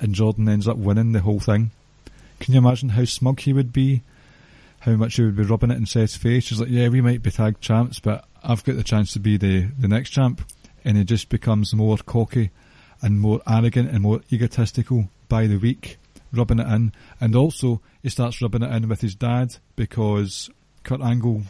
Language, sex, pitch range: English, male, 110-130 Hz